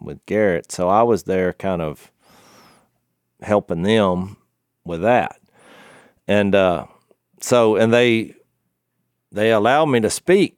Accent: American